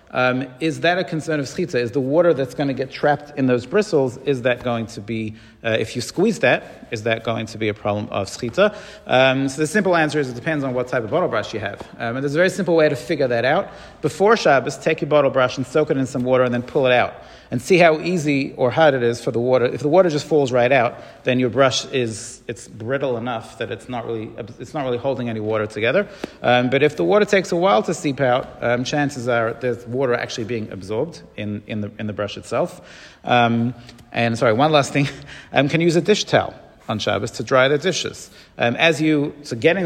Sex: male